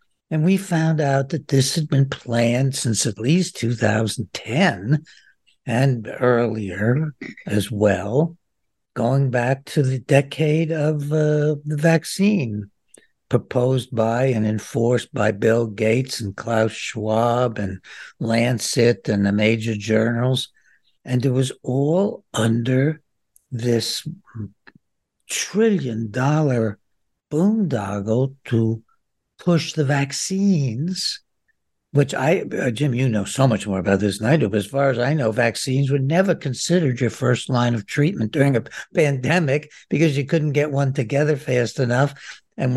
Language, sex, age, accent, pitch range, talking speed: English, male, 60-79, American, 115-150 Hz, 135 wpm